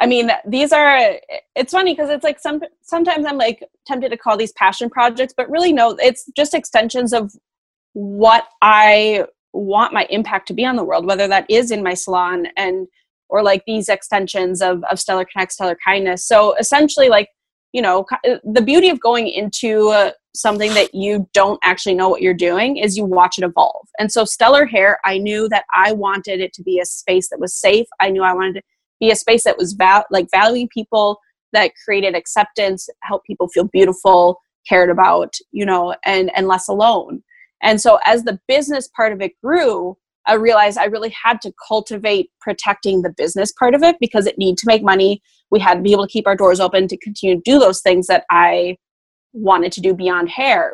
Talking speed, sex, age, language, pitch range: 205 wpm, female, 20-39, English, 185-235 Hz